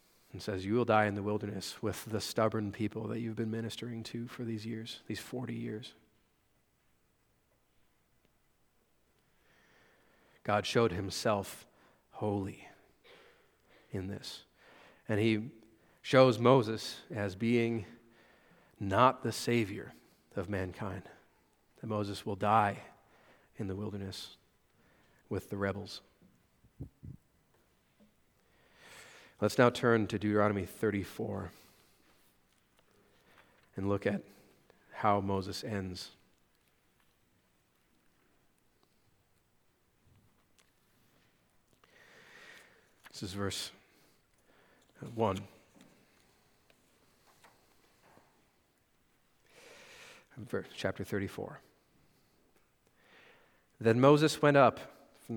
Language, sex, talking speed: English, male, 80 wpm